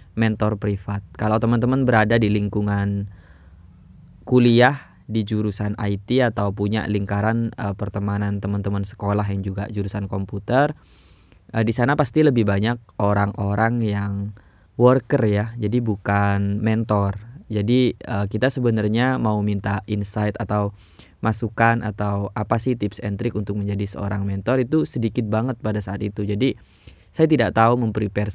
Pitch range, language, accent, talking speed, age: 100-120 Hz, Indonesian, native, 140 wpm, 20-39